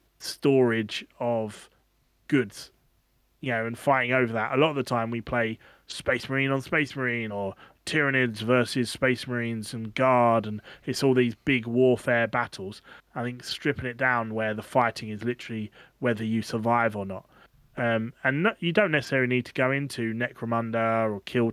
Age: 30-49